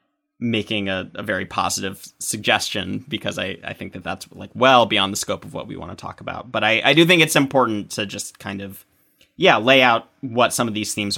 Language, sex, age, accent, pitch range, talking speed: English, male, 30-49, American, 100-125 Hz, 230 wpm